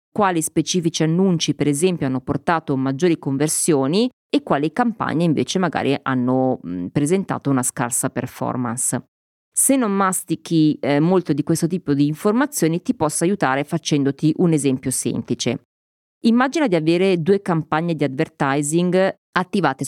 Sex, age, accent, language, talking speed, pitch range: female, 30-49, native, Italian, 135 wpm, 140-185 Hz